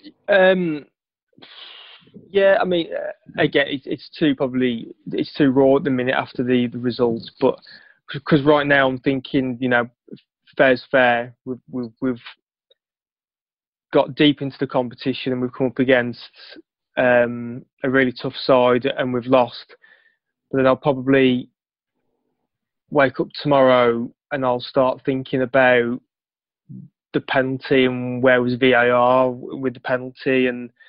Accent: British